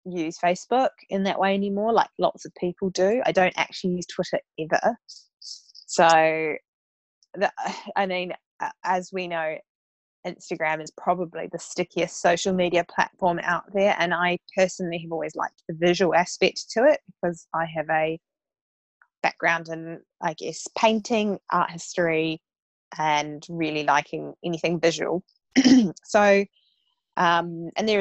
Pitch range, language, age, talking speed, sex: 160-185 Hz, English, 20-39, 135 wpm, female